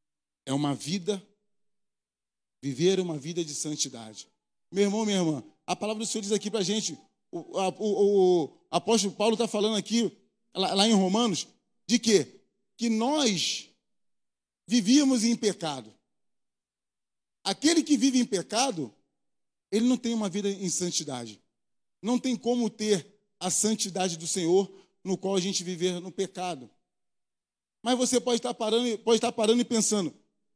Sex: male